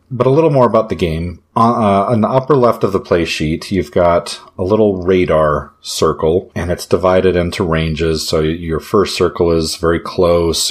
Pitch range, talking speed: 80-100 Hz, 190 wpm